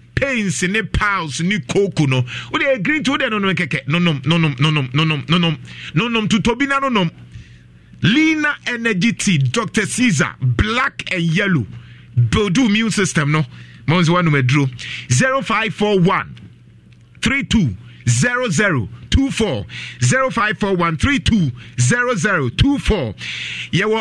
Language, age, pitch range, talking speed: English, 50-69, 120-200 Hz, 120 wpm